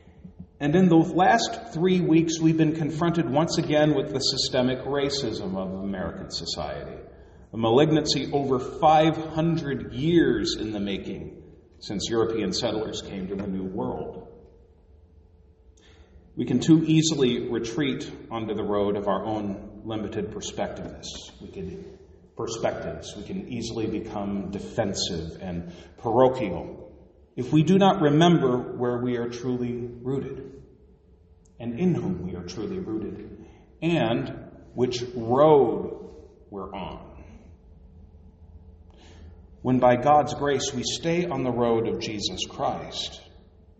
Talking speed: 125 wpm